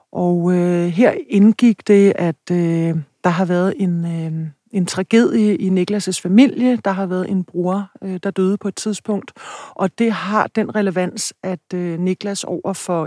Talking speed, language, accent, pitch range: 170 wpm, Danish, native, 170-200 Hz